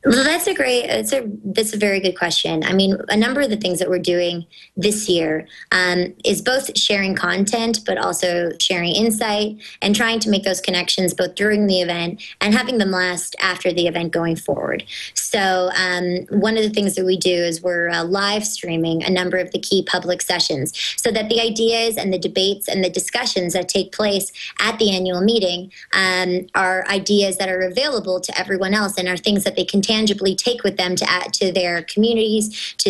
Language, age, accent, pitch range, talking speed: English, 20-39, American, 180-210 Hz, 210 wpm